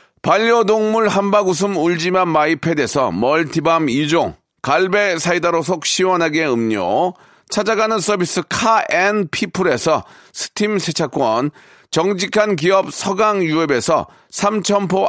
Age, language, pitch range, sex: 40-59, Korean, 160-200 Hz, male